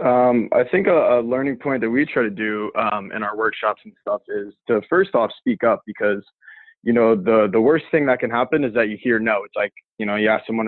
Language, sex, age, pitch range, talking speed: English, male, 20-39, 105-125 Hz, 260 wpm